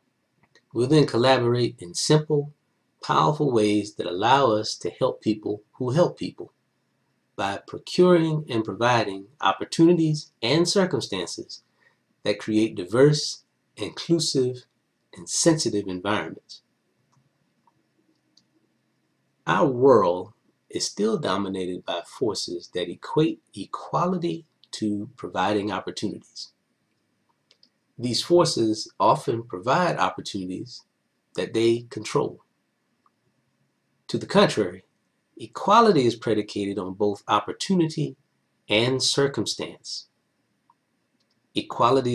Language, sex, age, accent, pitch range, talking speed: English, male, 30-49, American, 105-160 Hz, 90 wpm